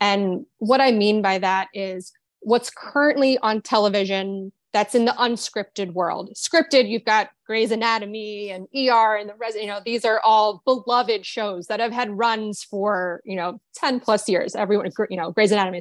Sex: female